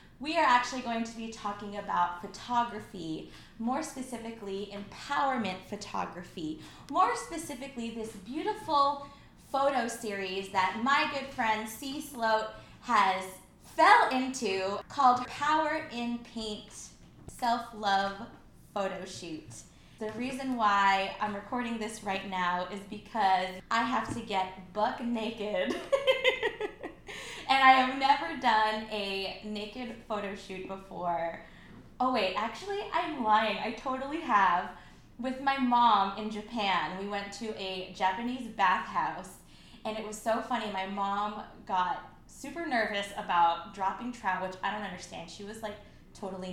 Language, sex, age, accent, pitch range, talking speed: English, female, 20-39, American, 195-250 Hz, 130 wpm